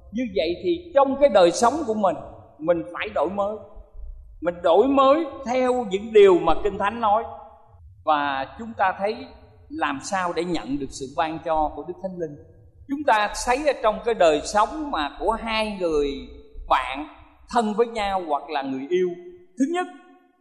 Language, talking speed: Vietnamese, 180 wpm